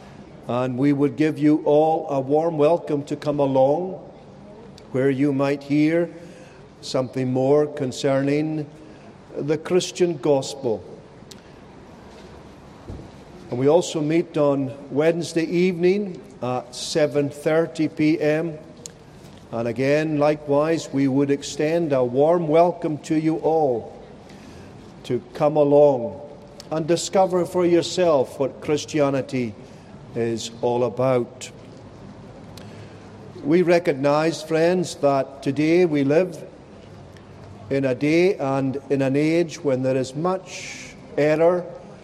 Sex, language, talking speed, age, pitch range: male, English, 110 wpm, 50-69, 135-165 Hz